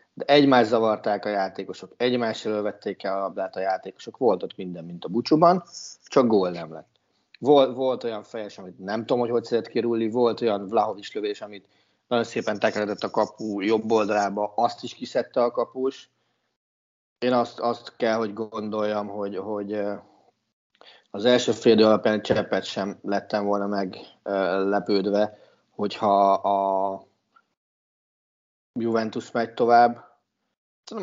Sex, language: male, Hungarian